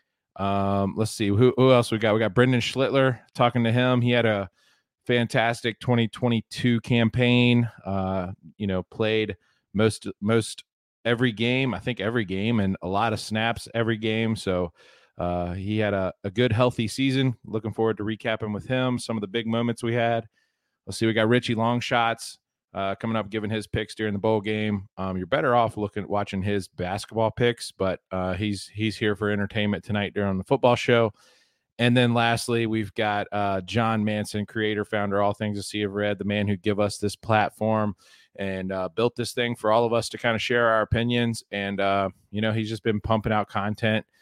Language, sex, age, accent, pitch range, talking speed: English, male, 30-49, American, 100-115 Hz, 200 wpm